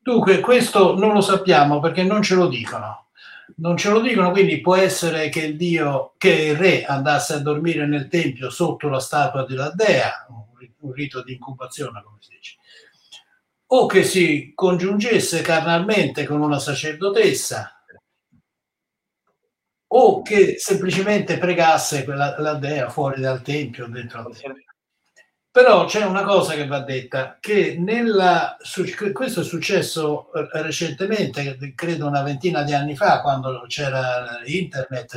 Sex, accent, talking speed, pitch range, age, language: male, native, 140 wpm, 130-180 Hz, 60-79, Italian